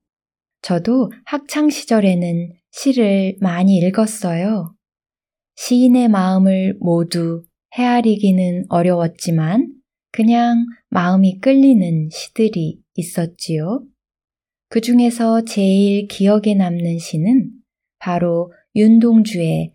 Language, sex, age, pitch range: Korean, female, 20-39, 175-225 Hz